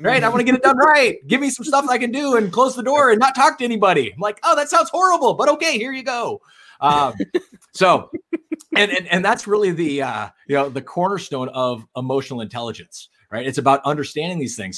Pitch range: 125-185 Hz